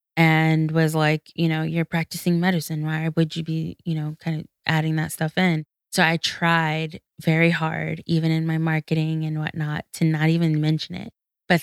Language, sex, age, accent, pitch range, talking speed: English, female, 20-39, American, 160-175 Hz, 190 wpm